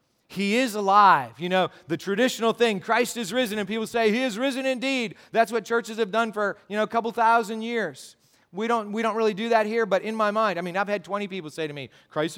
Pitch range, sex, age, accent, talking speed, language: 145-215 Hz, male, 40-59, American, 250 wpm, English